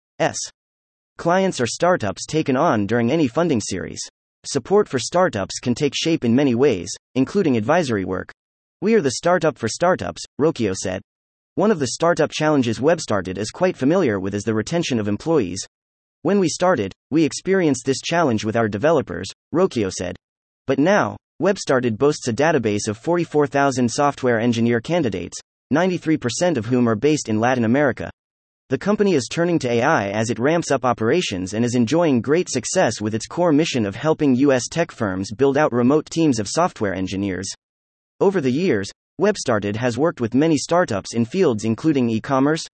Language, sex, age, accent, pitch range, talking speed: English, male, 30-49, American, 110-160 Hz, 170 wpm